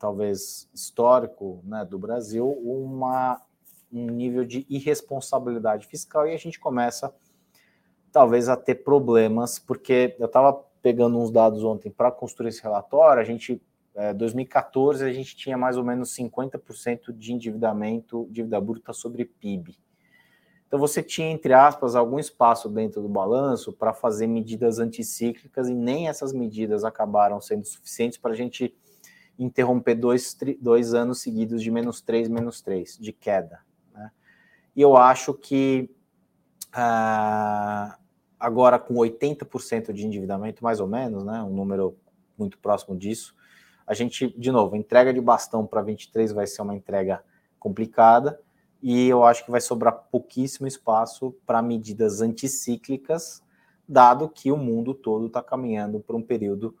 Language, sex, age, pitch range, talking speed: Portuguese, male, 20-39, 110-130 Hz, 145 wpm